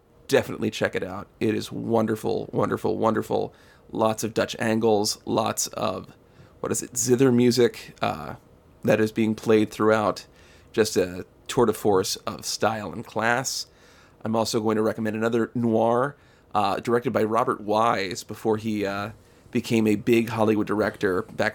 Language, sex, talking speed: English, male, 155 wpm